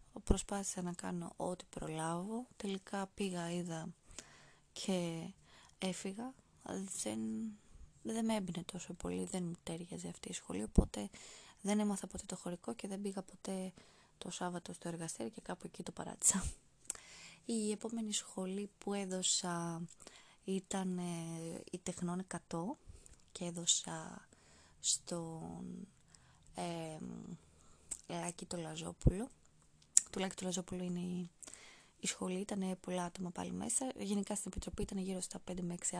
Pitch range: 170-200 Hz